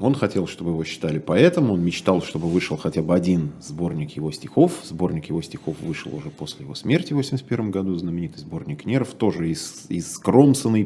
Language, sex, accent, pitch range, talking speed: Russian, male, native, 85-115 Hz, 180 wpm